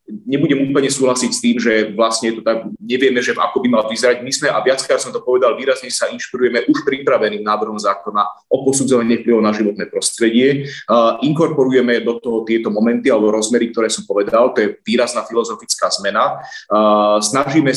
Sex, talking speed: male, 180 wpm